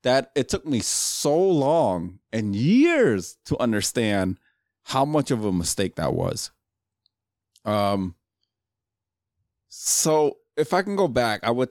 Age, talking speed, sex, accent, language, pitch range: 30-49, 135 wpm, male, American, English, 100-130 Hz